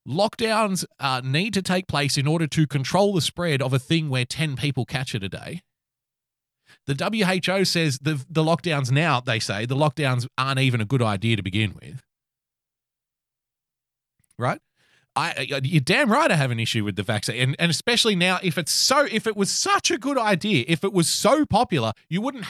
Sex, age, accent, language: male, 30-49, Australian, English